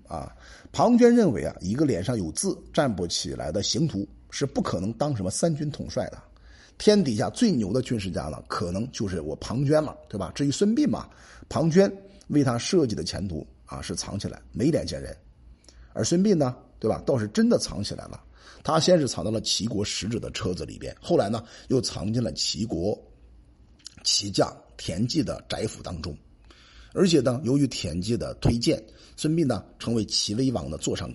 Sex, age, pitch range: male, 50-69, 100-165 Hz